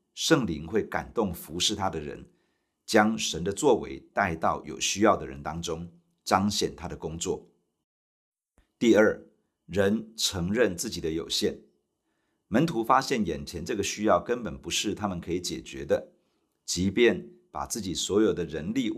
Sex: male